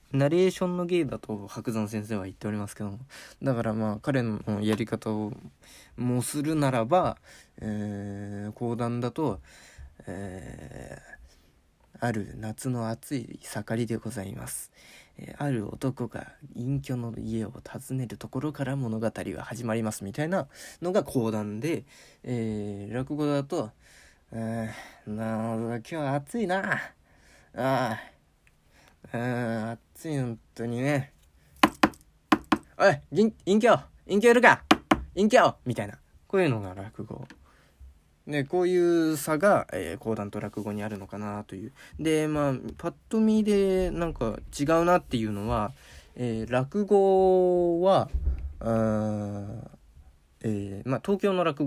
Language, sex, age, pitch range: Japanese, male, 20-39, 105-150 Hz